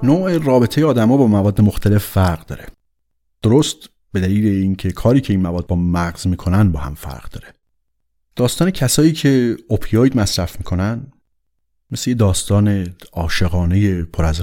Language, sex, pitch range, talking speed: Persian, male, 85-115 Hz, 140 wpm